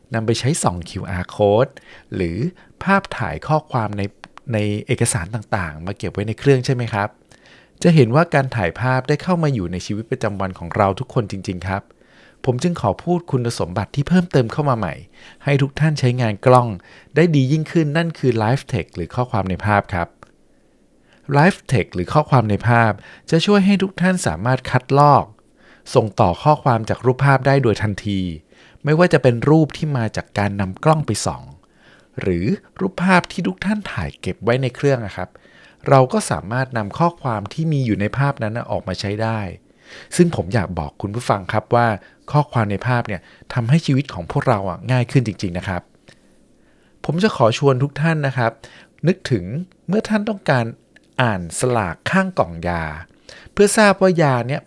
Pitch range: 105-150 Hz